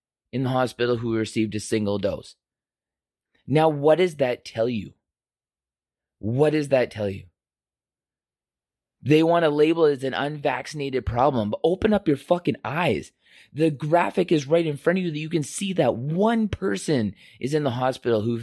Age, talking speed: 20-39, 175 wpm